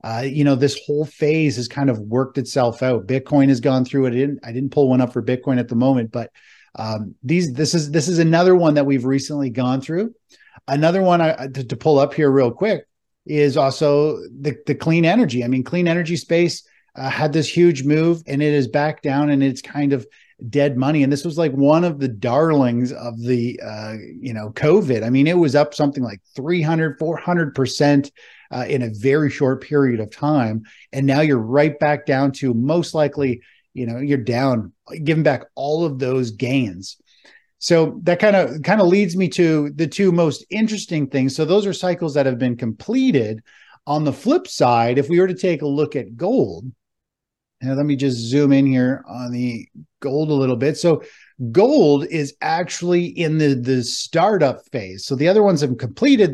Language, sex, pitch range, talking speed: English, male, 130-155 Hz, 205 wpm